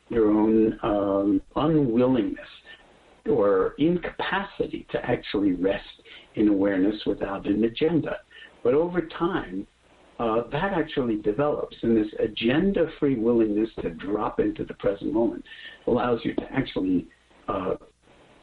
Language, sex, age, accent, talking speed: English, male, 60-79, American, 115 wpm